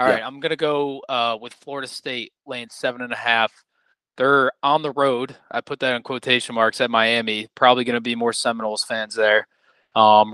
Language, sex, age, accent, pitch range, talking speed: English, male, 20-39, American, 115-135 Hz, 210 wpm